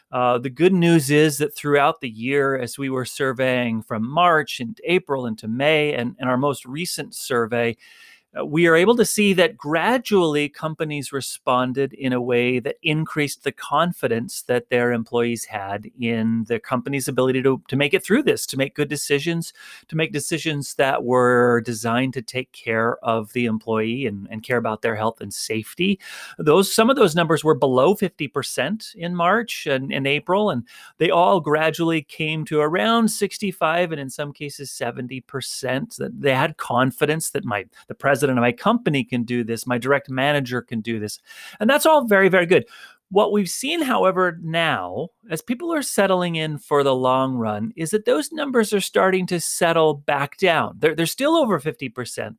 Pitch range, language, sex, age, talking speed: 125-175 Hz, English, male, 30-49, 185 wpm